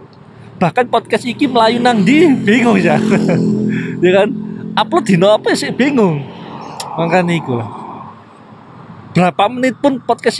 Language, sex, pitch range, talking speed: Indonesian, male, 140-200 Hz, 110 wpm